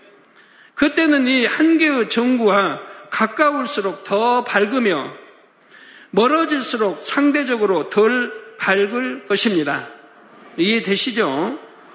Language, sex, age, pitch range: Korean, male, 50-69, 210-285 Hz